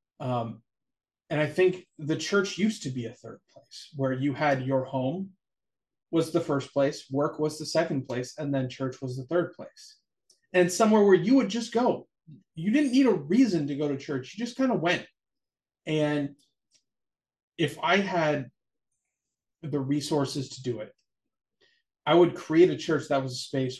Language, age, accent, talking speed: English, 30-49, American, 180 wpm